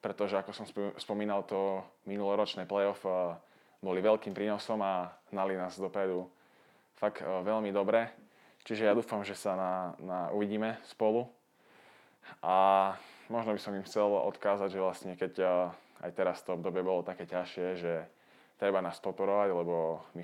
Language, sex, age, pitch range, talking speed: Slovak, male, 20-39, 85-100 Hz, 150 wpm